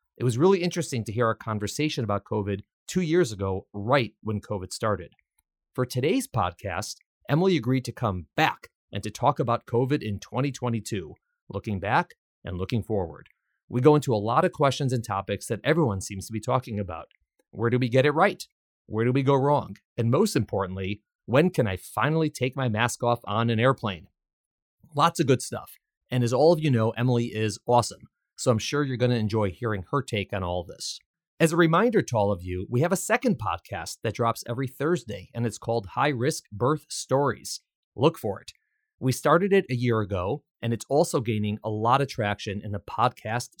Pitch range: 105-145 Hz